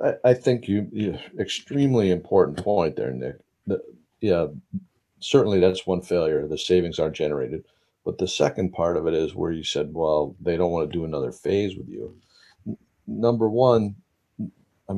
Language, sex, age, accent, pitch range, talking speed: English, male, 50-69, American, 80-100 Hz, 170 wpm